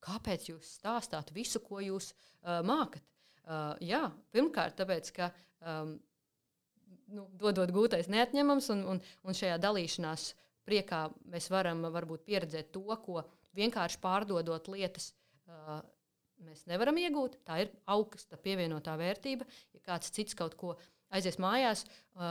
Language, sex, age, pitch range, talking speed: English, female, 30-49, 165-200 Hz, 130 wpm